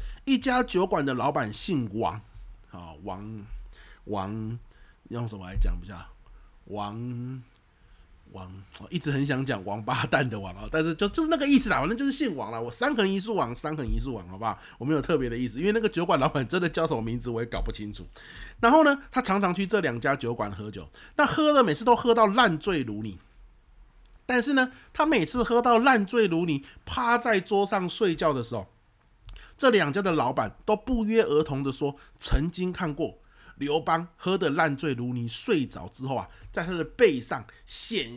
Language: Chinese